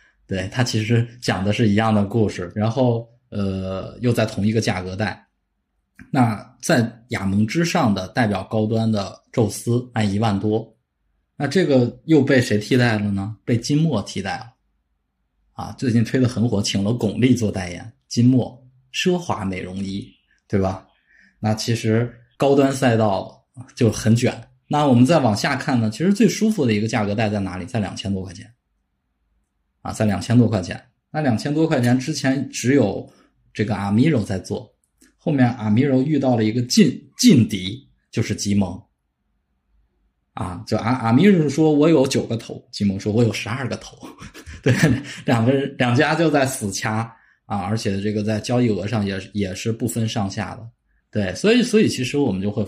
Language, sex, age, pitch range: Chinese, male, 20-39, 100-125 Hz